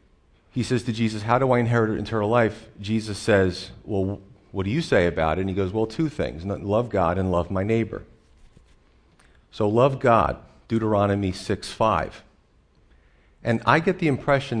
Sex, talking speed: male, 175 wpm